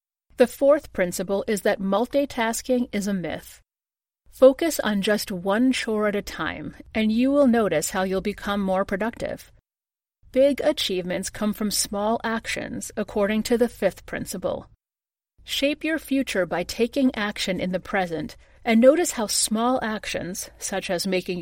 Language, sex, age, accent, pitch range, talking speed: English, female, 40-59, American, 190-245 Hz, 150 wpm